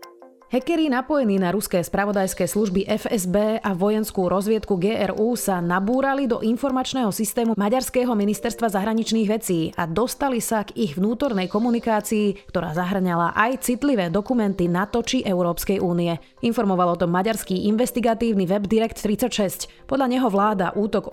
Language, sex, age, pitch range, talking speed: Slovak, female, 30-49, 180-230 Hz, 130 wpm